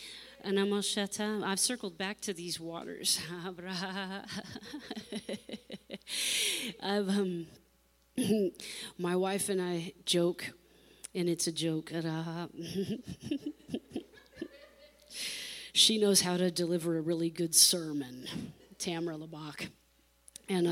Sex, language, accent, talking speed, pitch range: female, English, American, 85 wpm, 175-215 Hz